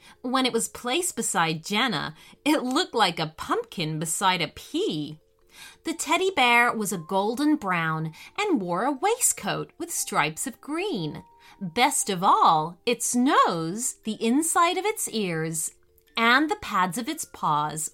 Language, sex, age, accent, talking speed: English, female, 30-49, American, 150 wpm